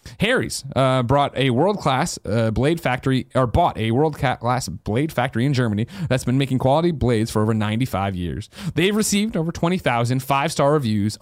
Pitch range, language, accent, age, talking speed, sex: 115-160 Hz, English, American, 30-49, 160 wpm, male